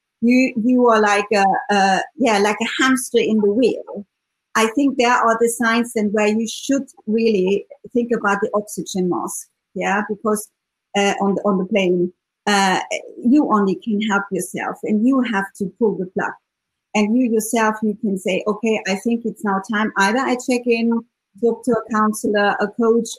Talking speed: 185 wpm